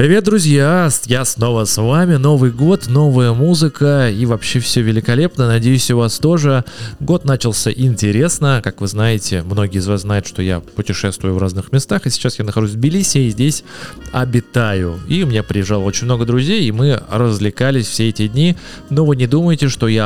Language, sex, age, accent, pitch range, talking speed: Russian, male, 20-39, native, 105-140 Hz, 185 wpm